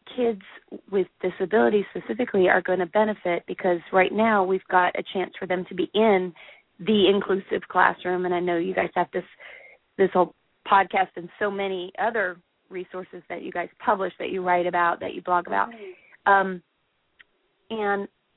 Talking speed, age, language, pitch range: 170 wpm, 30-49, English, 180-205 Hz